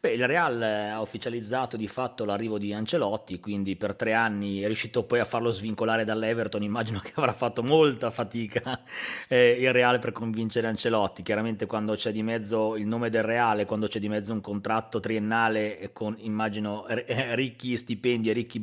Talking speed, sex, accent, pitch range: 175 wpm, male, native, 105-120 Hz